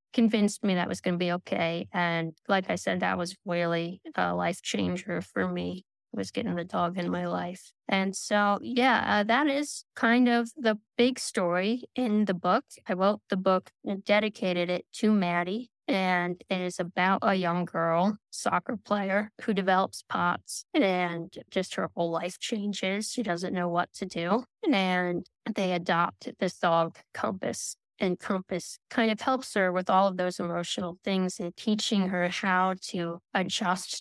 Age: 20-39